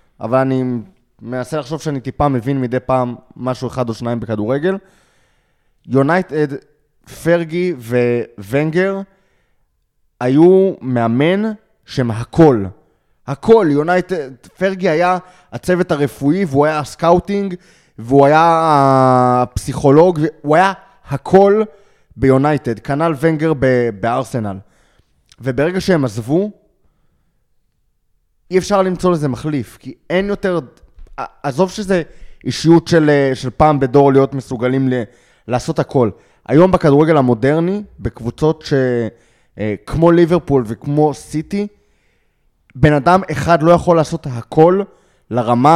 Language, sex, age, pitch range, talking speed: Hebrew, male, 20-39, 125-175 Hz, 105 wpm